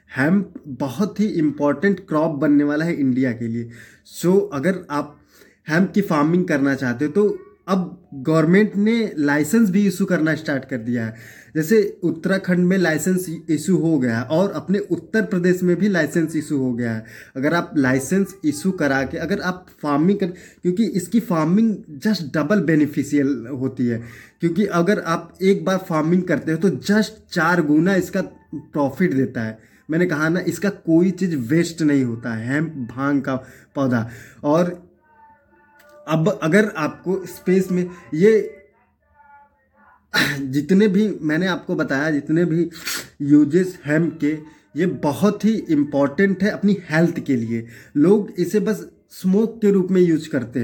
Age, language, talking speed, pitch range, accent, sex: 20-39, Hindi, 160 wpm, 145-190 Hz, native, male